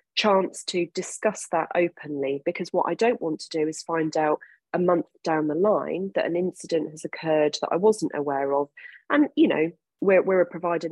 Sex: female